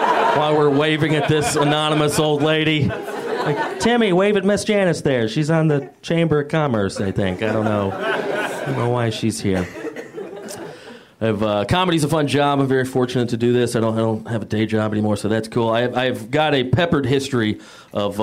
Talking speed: 205 wpm